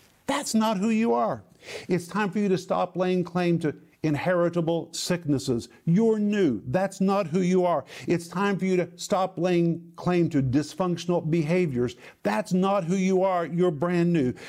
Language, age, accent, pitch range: English, 50-69, American, 145-185 Hz